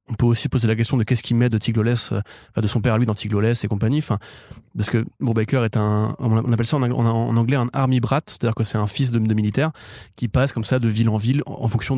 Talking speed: 270 wpm